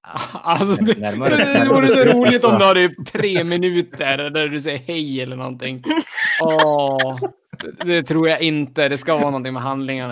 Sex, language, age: male, Swedish, 20-39